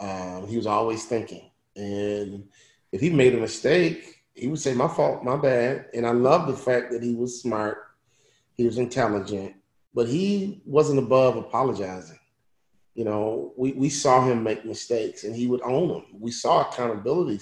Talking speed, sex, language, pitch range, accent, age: 175 wpm, male, English, 115-140 Hz, American, 30-49